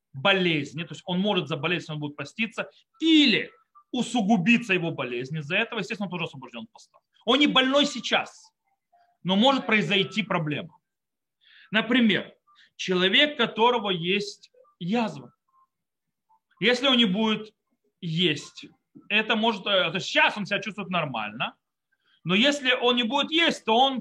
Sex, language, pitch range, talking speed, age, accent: male, Russian, 170-235 Hz, 135 wpm, 30-49, native